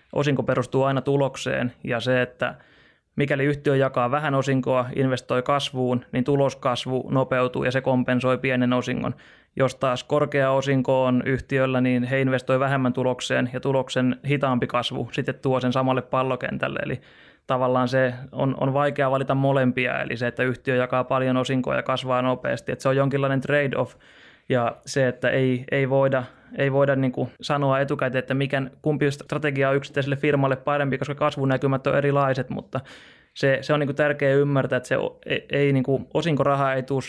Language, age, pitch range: Finnish, 20-39, 130-140 Hz